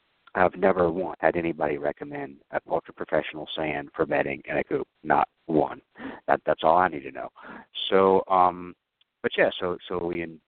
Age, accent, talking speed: 60-79, American, 180 wpm